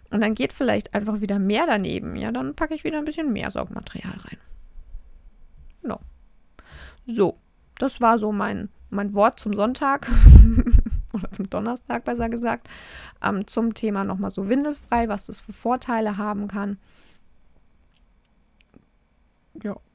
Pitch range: 195-245 Hz